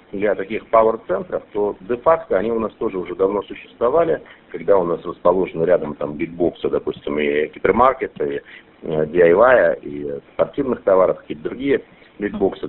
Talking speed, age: 145 wpm, 50-69